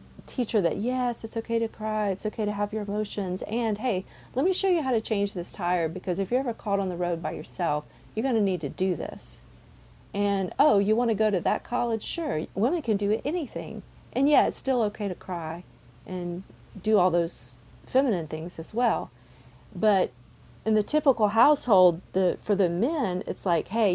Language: English